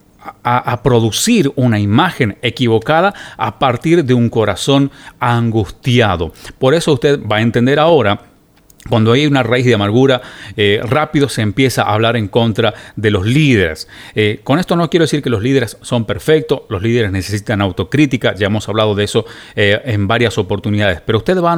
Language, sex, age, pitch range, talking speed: Spanish, male, 40-59, 110-145 Hz, 180 wpm